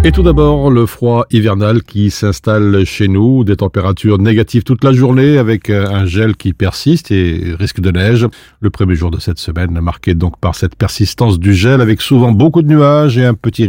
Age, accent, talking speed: 50-69, French, 200 wpm